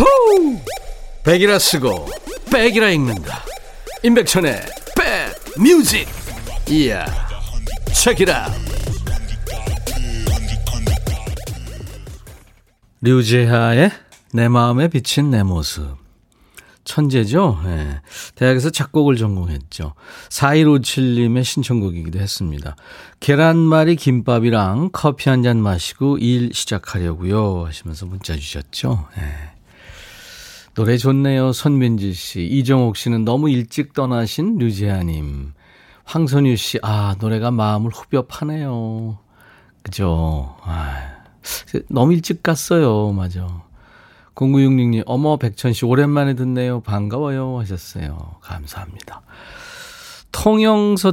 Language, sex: Korean, male